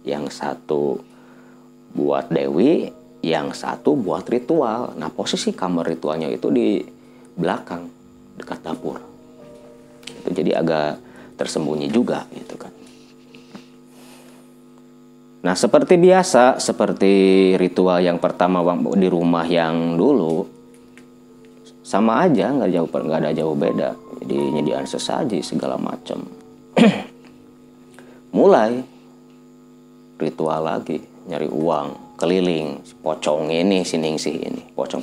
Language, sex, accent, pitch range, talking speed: Indonesian, male, native, 80-120 Hz, 100 wpm